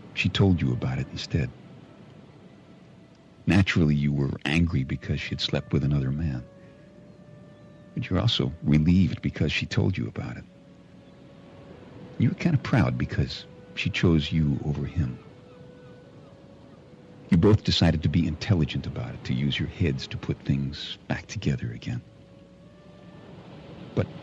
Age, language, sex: 50-69, English, male